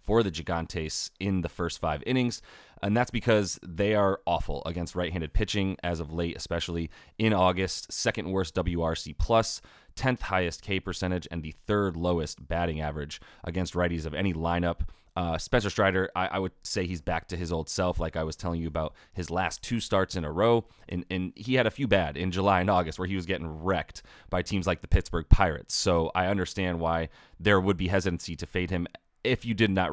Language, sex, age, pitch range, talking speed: English, male, 30-49, 85-100 Hz, 205 wpm